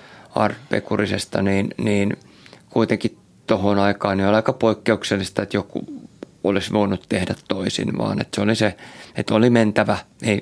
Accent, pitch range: native, 100-110 Hz